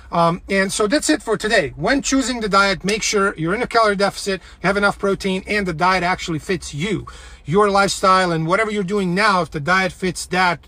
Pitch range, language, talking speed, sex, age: 165-200 Hz, English, 225 wpm, male, 40-59